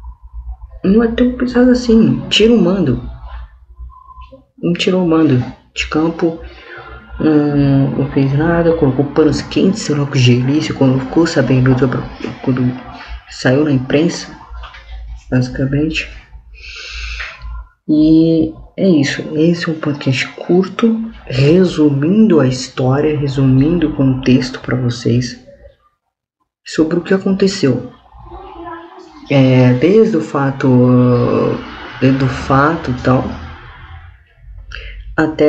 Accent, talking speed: Brazilian, 105 wpm